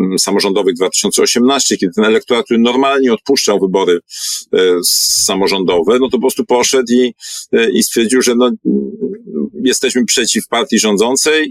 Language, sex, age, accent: Polish, male, 50-69, native